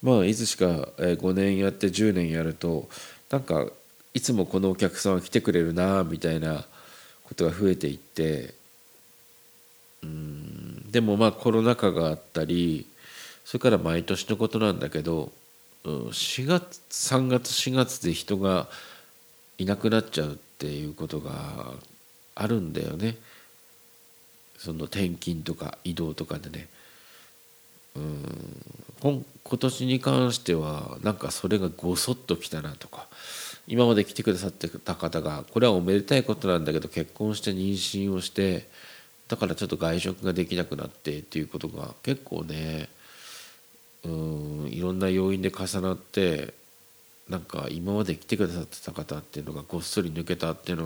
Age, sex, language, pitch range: 50-69, male, Japanese, 80-105 Hz